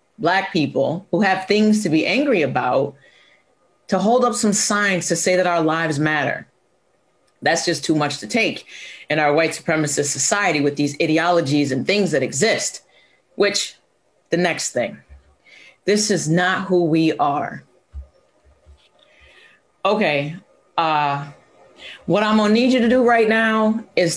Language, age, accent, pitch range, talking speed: English, 30-49, American, 150-200 Hz, 150 wpm